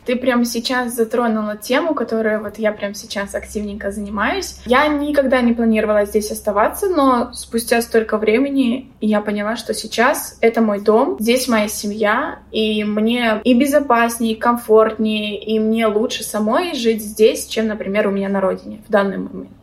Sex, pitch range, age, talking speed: female, 210-255 Hz, 20-39, 160 wpm